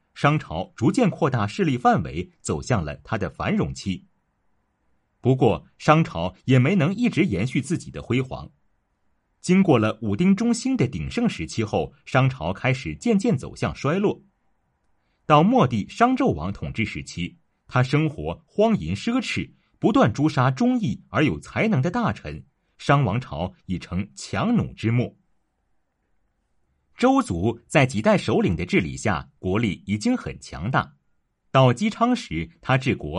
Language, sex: Chinese, male